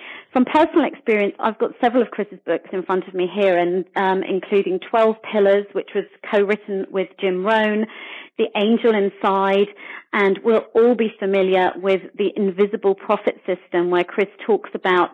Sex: female